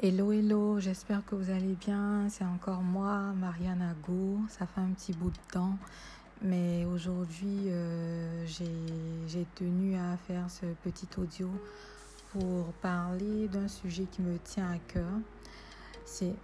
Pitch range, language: 170-195 Hz, French